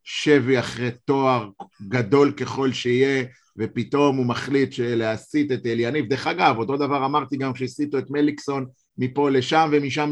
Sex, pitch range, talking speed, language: male, 135-165 Hz, 140 wpm, Hebrew